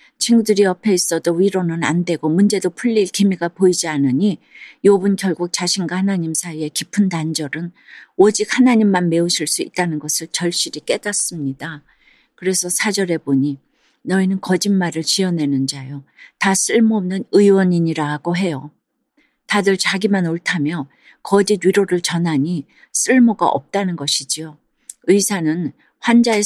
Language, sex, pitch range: Korean, female, 165-215 Hz